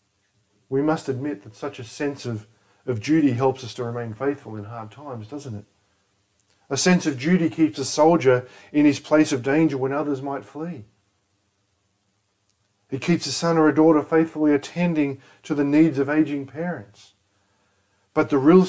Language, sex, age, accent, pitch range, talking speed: English, male, 50-69, Australian, 100-140 Hz, 175 wpm